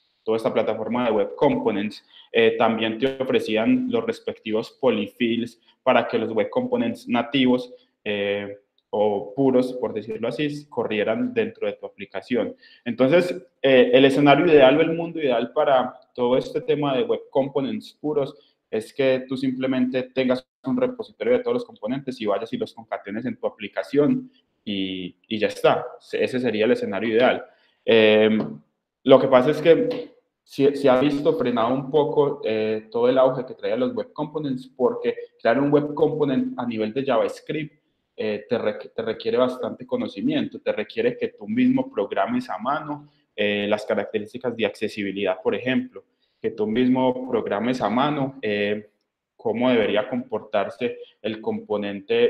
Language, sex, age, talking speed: Spanish, male, 20-39, 160 wpm